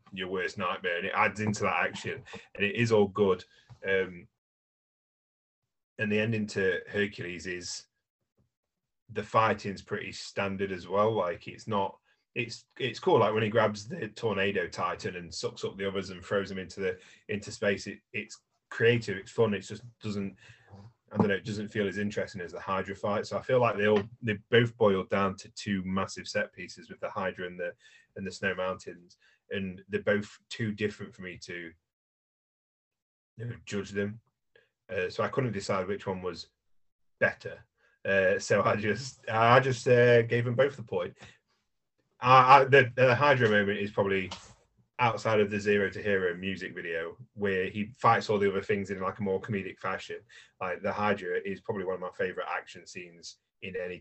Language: English